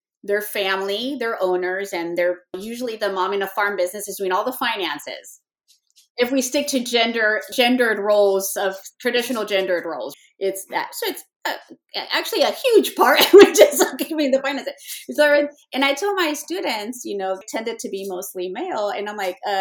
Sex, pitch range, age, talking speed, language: female, 195-290 Hz, 30-49, 180 wpm, English